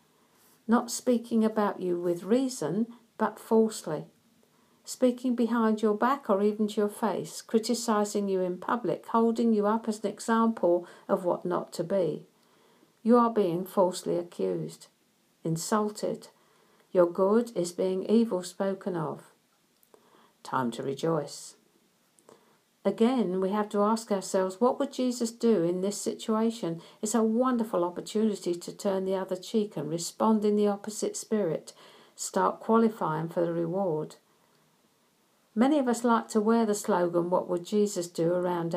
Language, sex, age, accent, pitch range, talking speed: English, female, 50-69, British, 180-225 Hz, 145 wpm